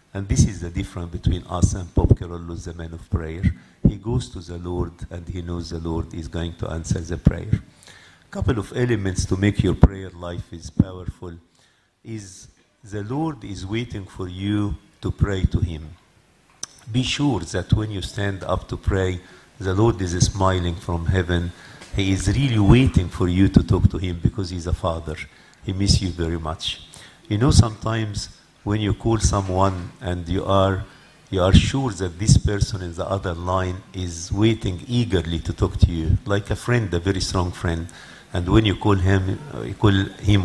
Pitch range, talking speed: 90-110 Hz, 190 wpm